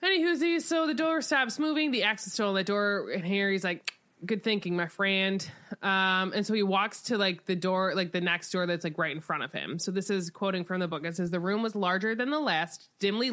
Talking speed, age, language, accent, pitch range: 255 wpm, 20-39, English, American, 180-220 Hz